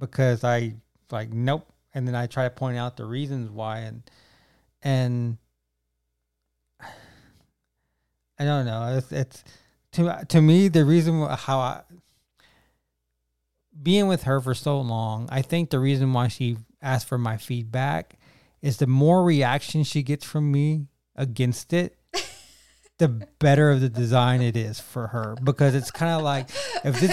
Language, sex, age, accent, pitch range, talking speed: English, male, 20-39, American, 115-145 Hz, 155 wpm